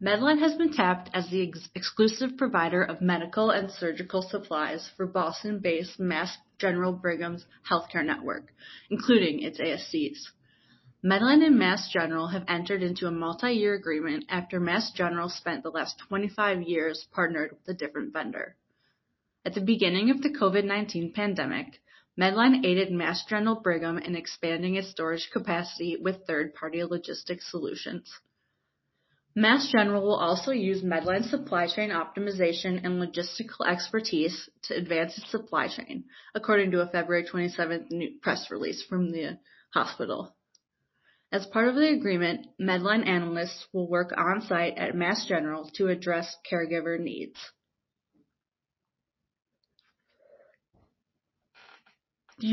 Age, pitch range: 30-49, 170-215 Hz